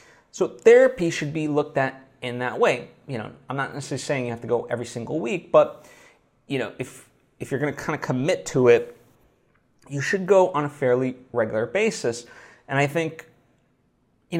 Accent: American